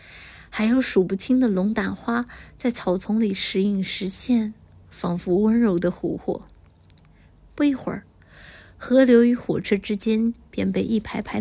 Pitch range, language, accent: 185-240 Hz, Chinese, native